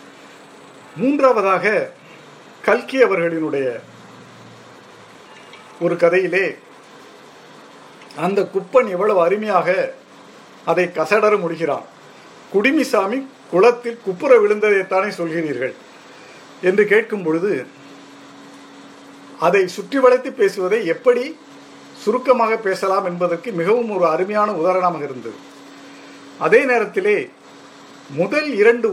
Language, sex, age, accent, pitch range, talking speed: Tamil, male, 50-69, native, 185-265 Hz, 75 wpm